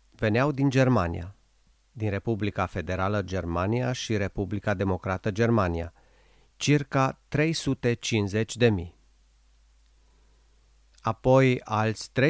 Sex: male